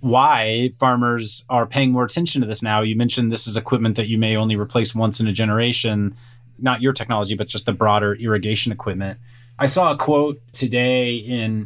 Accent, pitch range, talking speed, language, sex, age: American, 110-130 Hz, 195 wpm, English, male, 30-49